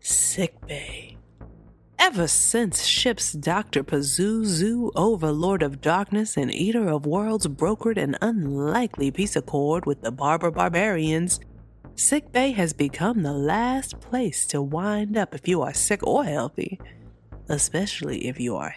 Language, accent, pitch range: English, American, 155-220 Hz